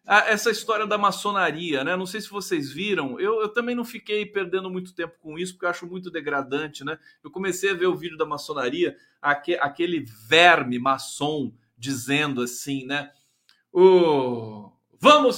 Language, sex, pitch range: Portuguese, male, 135-185 Hz